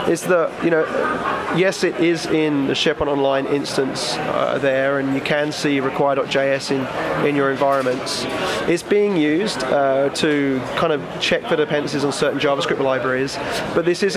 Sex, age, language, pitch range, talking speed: male, 30-49, English, 135-155 Hz, 160 wpm